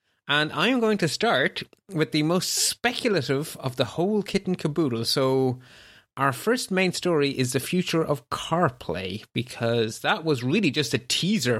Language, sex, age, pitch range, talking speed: English, male, 30-49, 125-155 Hz, 160 wpm